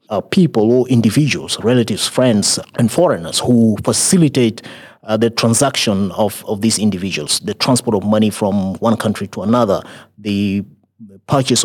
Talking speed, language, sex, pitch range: 145 wpm, English, male, 110-130 Hz